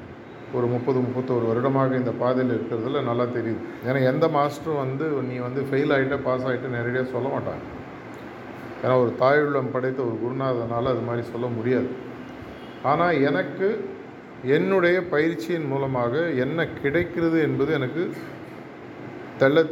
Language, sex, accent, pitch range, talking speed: Tamil, male, native, 125-150 Hz, 130 wpm